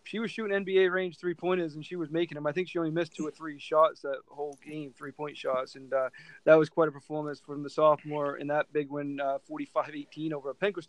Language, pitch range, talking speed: English, 145-170 Hz, 260 wpm